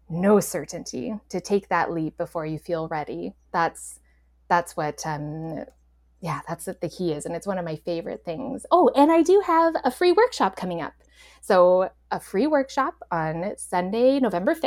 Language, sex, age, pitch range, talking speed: English, female, 20-39, 170-260 Hz, 180 wpm